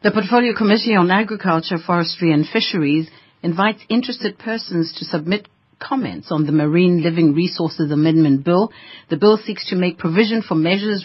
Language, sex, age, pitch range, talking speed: English, female, 60-79, 160-215 Hz, 160 wpm